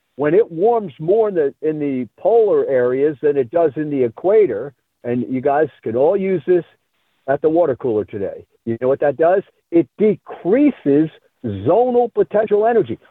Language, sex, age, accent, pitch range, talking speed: English, male, 50-69, American, 150-235 Hz, 175 wpm